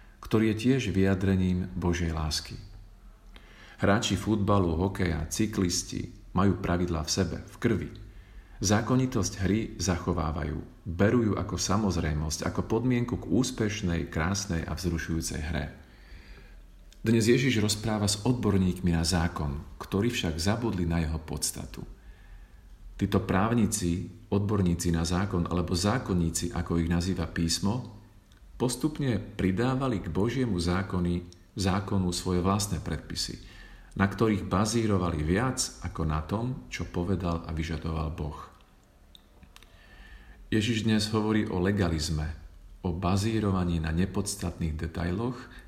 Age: 40-59